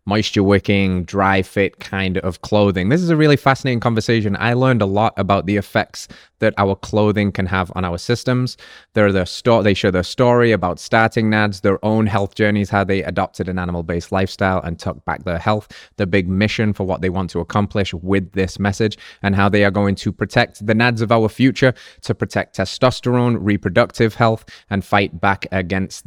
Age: 20-39